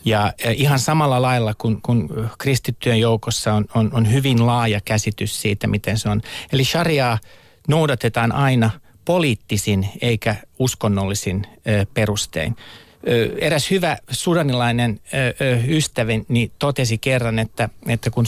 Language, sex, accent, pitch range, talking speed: Finnish, male, native, 115-140 Hz, 115 wpm